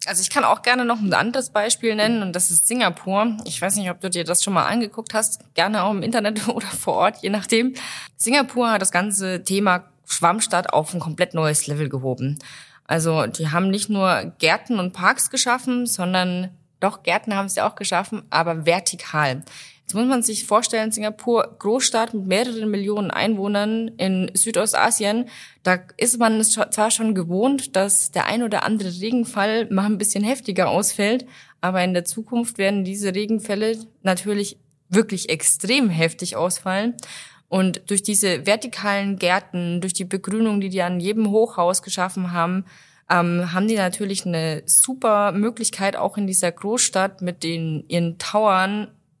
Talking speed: 170 wpm